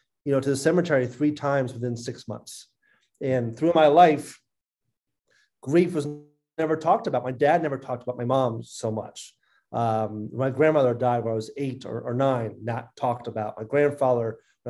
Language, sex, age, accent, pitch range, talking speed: English, male, 30-49, American, 125-155 Hz, 185 wpm